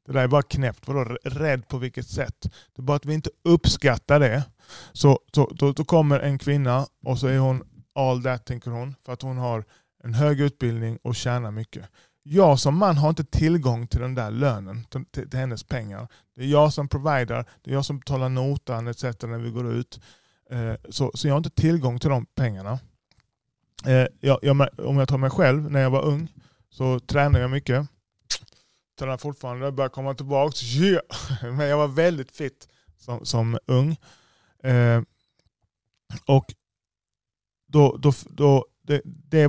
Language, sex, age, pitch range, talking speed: Swedish, male, 20-39, 120-140 Hz, 185 wpm